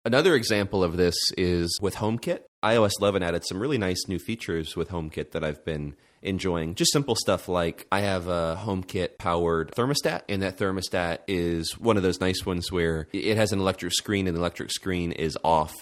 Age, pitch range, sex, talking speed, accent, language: 30-49, 85-105 Hz, male, 195 wpm, American, English